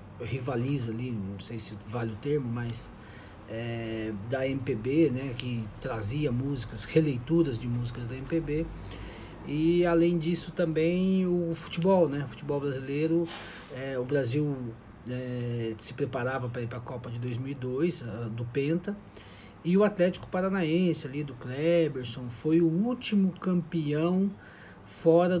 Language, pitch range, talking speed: Portuguese, 120-160 Hz, 130 wpm